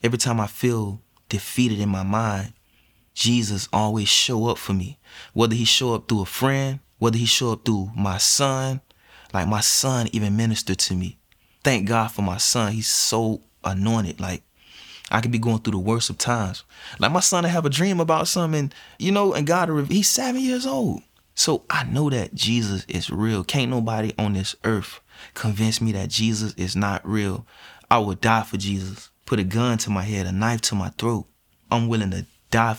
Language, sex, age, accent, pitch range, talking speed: English, male, 20-39, American, 100-120 Hz, 200 wpm